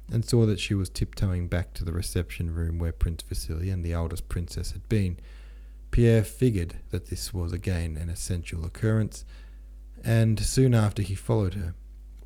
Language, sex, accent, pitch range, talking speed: English, male, Australian, 80-105 Hz, 170 wpm